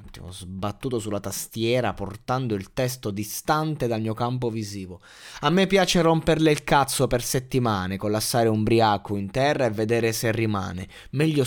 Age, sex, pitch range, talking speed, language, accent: 20-39, male, 105-135 Hz, 155 wpm, Italian, native